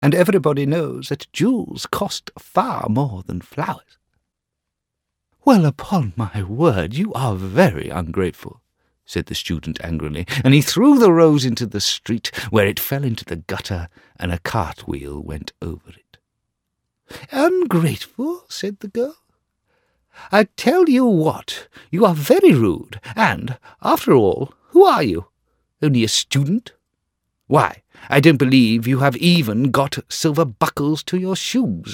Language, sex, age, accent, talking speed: English, male, 50-69, British, 145 wpm